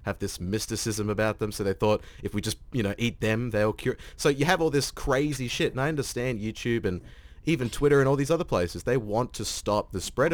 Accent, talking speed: Australian, 245 wpm